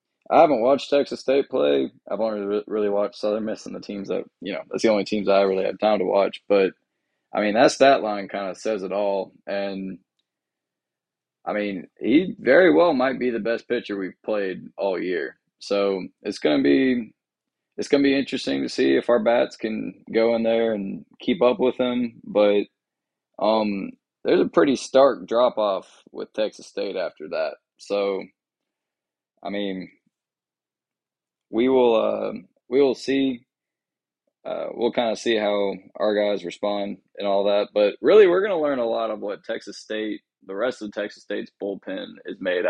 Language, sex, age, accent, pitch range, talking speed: English, male, 20-39, American, 100-125 Hz, 185 wpm